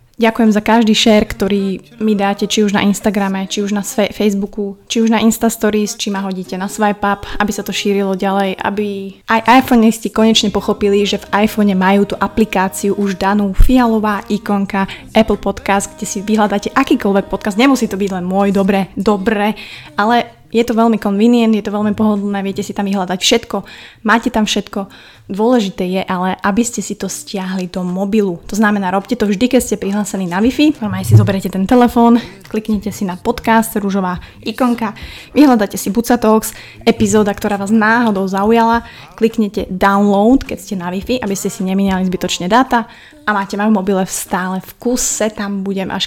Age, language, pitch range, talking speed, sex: 20-39, Slovak, 195-225 Hz, 180 wpm, female